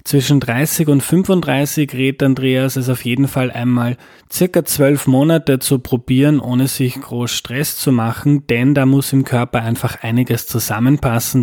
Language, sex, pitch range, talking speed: German, male, 120-145 Hz, 160 wpm